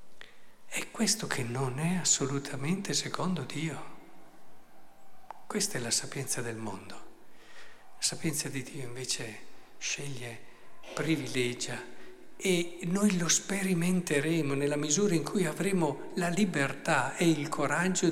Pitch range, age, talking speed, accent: 125-165 Hz, 50-69, 115 wpm, native